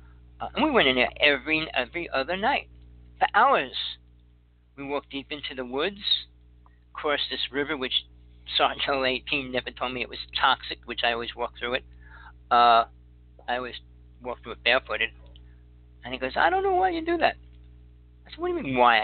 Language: English